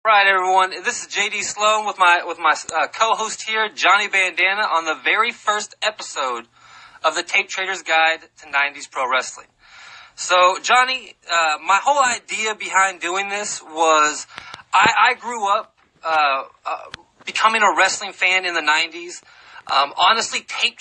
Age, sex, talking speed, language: 20-39, male, 160 wpm, English